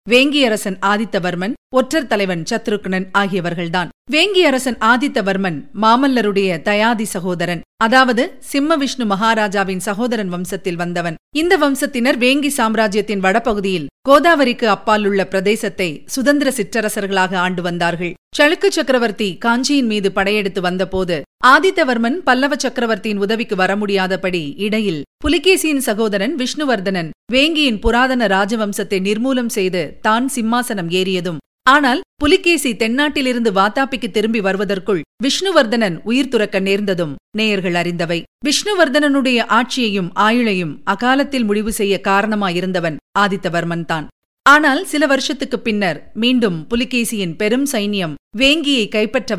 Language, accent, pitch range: Tamil, native, 195-255 Hz